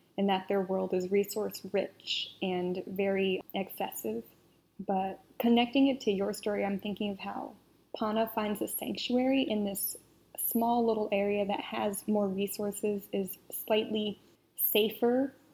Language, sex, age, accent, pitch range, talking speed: English, female, 10-29, American, 200-225 Hz, 140 wpm